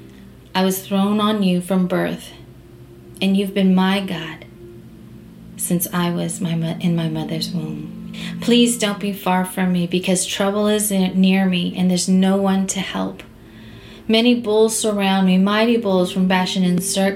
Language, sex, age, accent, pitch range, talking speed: English, female, 30-49, American, 170-200 Hz, 170 wpm